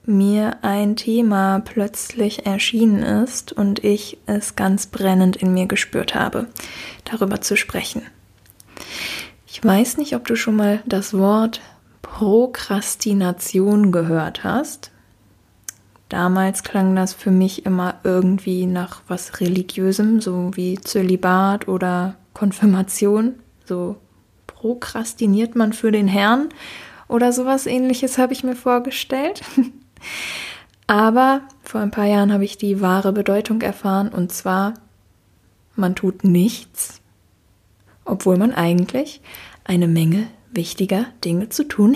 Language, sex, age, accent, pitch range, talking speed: German, female, 20-39, German, 185-230 Hz, 120 wpm